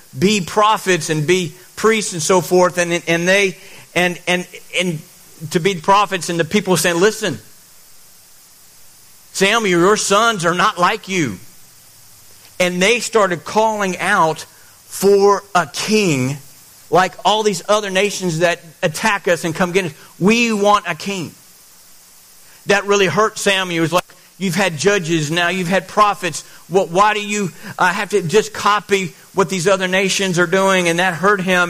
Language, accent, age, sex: English, American, 50-69, male